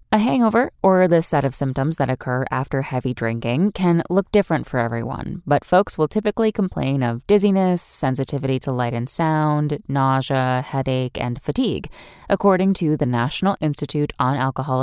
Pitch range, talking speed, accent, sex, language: 125-175 Hz, 160 wpm, American, female, English